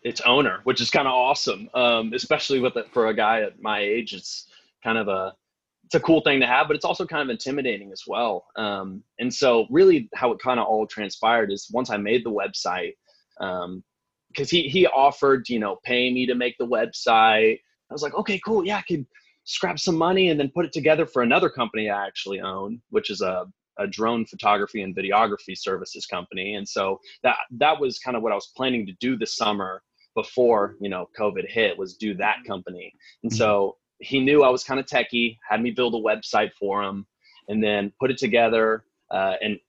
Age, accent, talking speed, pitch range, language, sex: 20-39, American, 215 wpm, 105-145 Hz, English, male